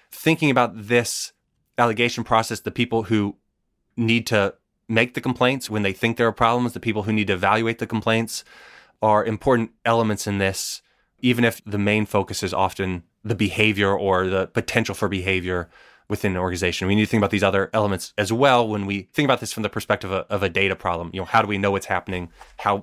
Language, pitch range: English, 95-110 Hz